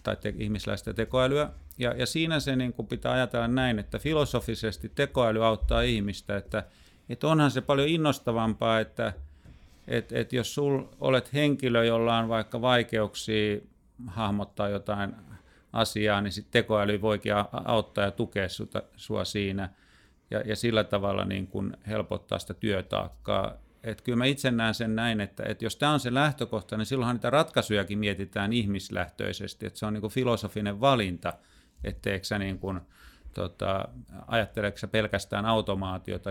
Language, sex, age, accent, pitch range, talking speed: Finnish, male, 40-59, native, 100-120 Hz, 140 wpm